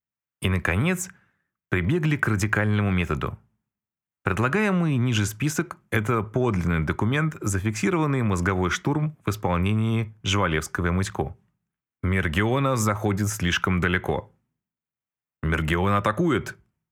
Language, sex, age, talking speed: Russian, male, 20-39, 90 wpm